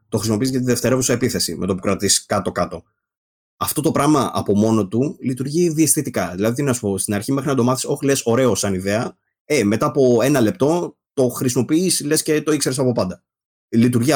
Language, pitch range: Greek, 100-130 Hz